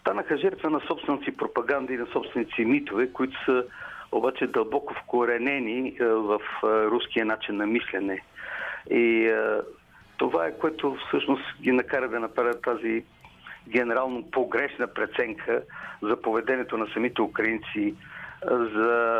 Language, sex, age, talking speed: Bulgarian, male, 50-69, 120 wpm